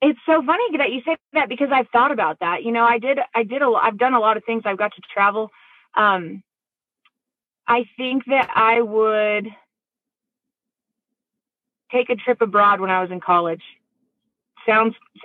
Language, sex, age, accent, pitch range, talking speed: English, female, 30-49, American, 200-245 Hz, 175 wpm